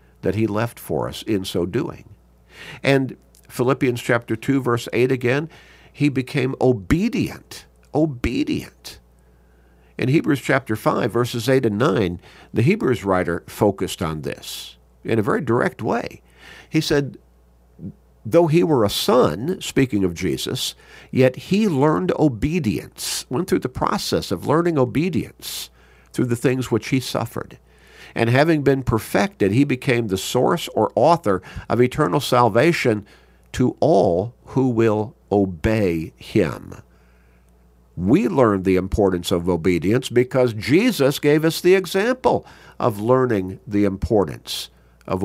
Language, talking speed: English, 135 wpm